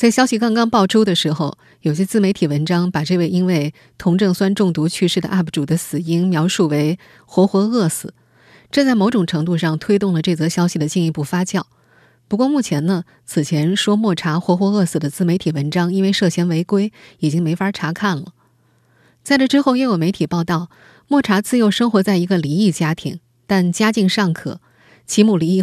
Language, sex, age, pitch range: Chinese, female, 20-39, 165-205 Hz